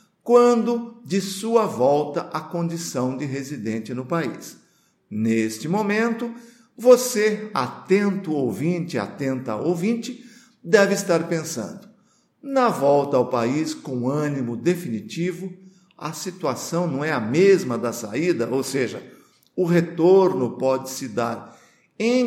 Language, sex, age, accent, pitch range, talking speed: Portuguese, male, 50-69, Brazilian, 135-205 Hz, 115 wpm